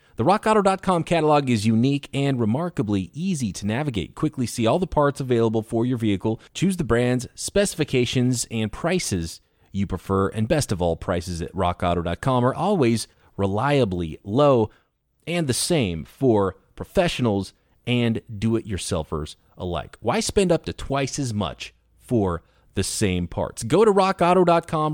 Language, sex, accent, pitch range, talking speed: English, male, American, 105-155 Hz, 145 wpm